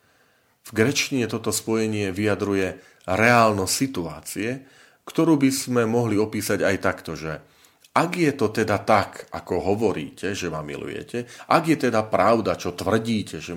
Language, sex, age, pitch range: Slovak, male, 40-59, 90-110 Hz